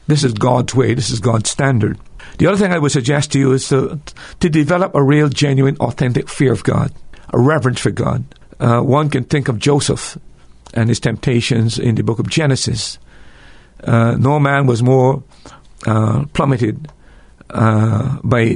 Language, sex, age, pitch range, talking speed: English, male, 50-69, 110-140 Hz, 175 wpm